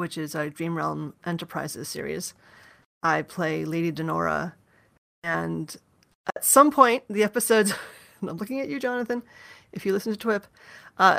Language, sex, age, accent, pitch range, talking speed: English, female, 30-49, American, 165-190 Hz, 150 wpm